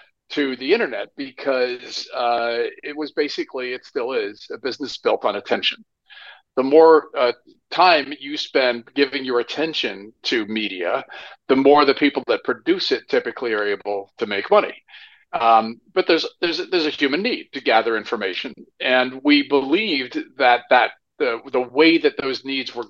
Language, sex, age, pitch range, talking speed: English, male, 50-69, 115-155 Hz, 165 wpm